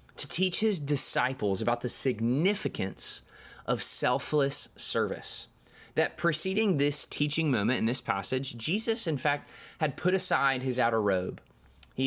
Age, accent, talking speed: 20-39, American, 140 wpm